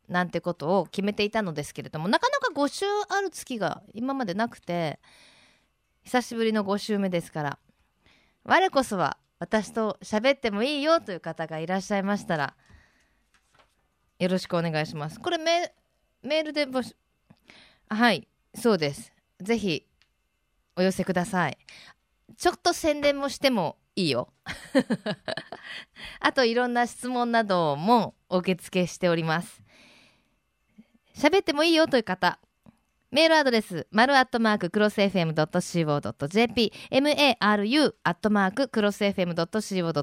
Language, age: Japanese, 20-39